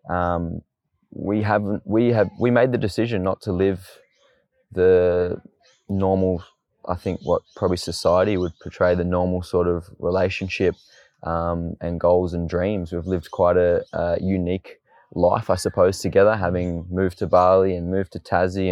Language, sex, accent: English, male, Australian